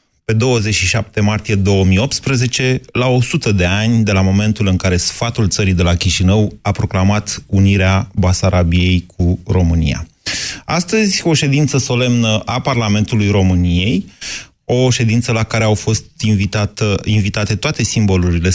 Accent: native